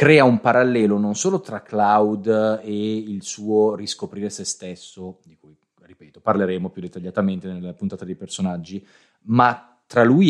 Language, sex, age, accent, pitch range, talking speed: Italian, male, 30-49, native, 100-130 Hz, 150 wpm